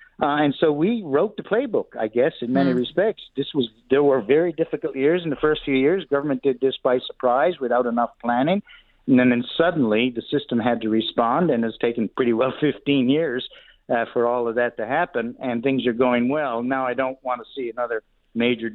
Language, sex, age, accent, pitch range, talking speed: English, male, 60-79, American, 115-150 Hz, 220 wpm